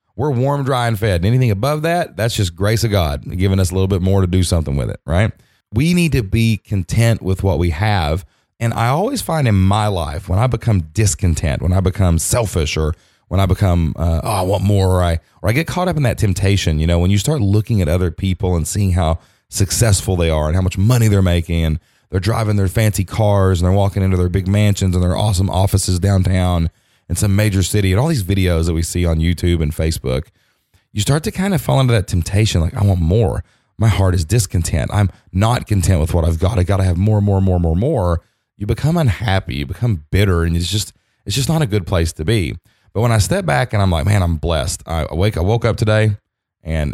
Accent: American